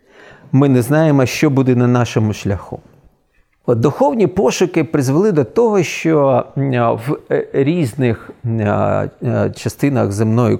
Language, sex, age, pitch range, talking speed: Ukrainian, male, 40-59, 120-170 Hz, 100 wpm